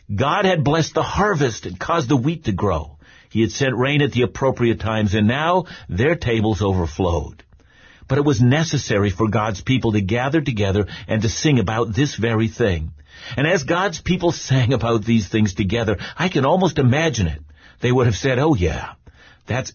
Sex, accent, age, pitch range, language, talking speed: male, American, 50-69, 110-165 Hz, English, 190 wpm